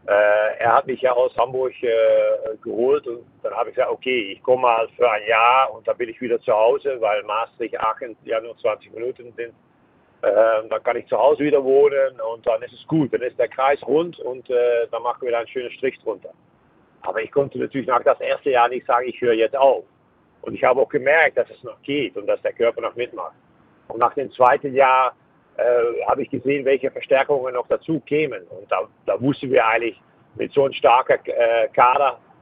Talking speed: 220 wpm